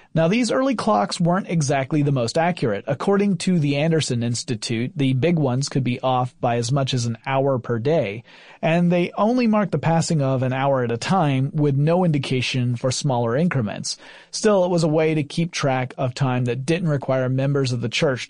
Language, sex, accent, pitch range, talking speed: English, male, American, 125-165 Hz, 205 wpm